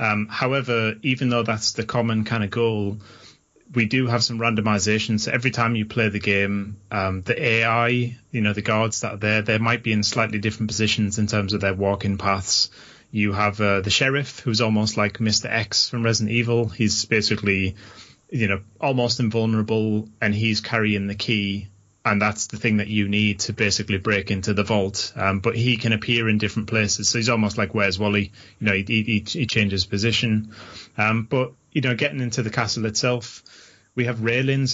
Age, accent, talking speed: 30-49, British, 195 wpm